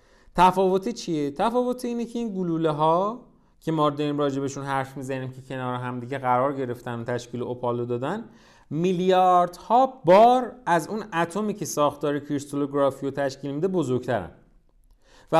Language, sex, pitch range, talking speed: Persian, male, 130-180 Hz, 145 wpm